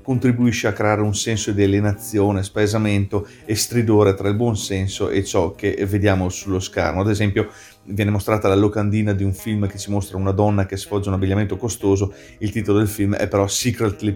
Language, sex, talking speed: Italian, male, 200 wpm